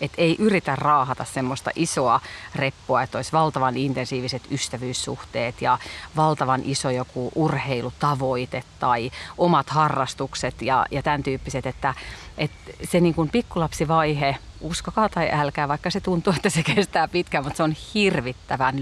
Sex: female